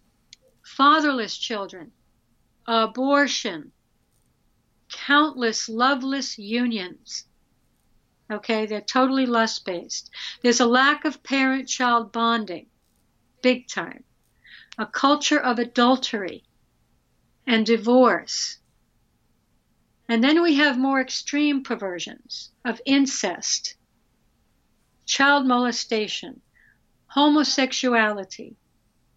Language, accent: English, American